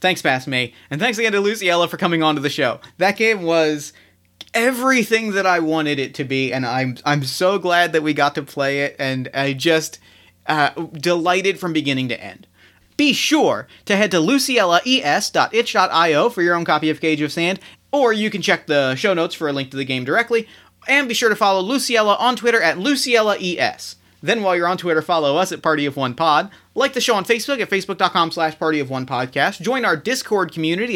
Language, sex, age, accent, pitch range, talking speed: English, male, 30-49, American, 145-205 Hz, 205 wpm